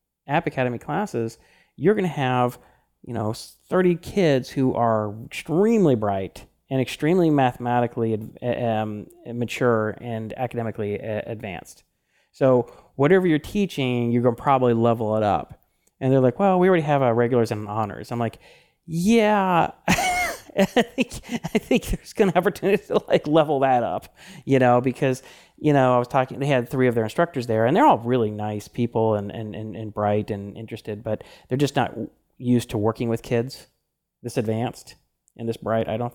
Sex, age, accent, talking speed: male, 30-49, American, 175 wpm